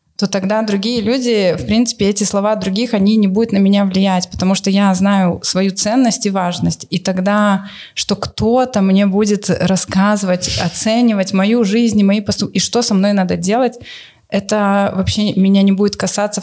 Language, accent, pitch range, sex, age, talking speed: Russian, native, 185-205 Hz, female, 20-39, 170 wpm